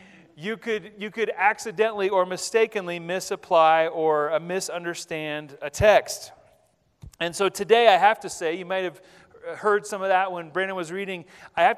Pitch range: 180-215 Hz